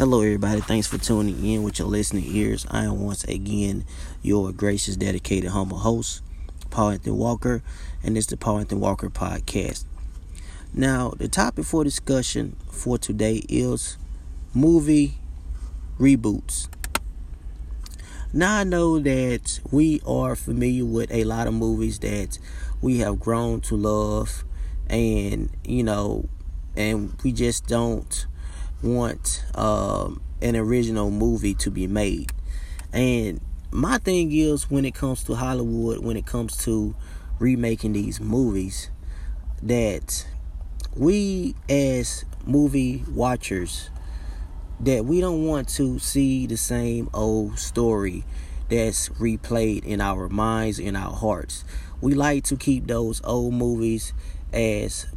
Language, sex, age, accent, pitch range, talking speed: English, male, 30-49, American, 75-120 Hz, 130 wpm